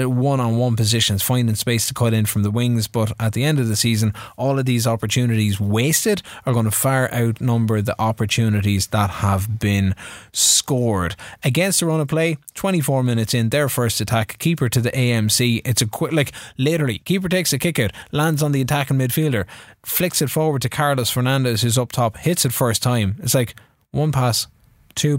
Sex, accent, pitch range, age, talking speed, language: male, Irish, 110-140 Hz, 20-39, 195 wpm, English